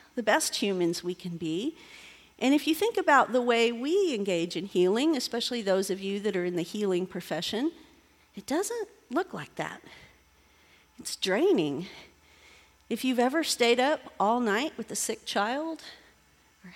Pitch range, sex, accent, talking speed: 210-295 Hz, female, American, 165 wpm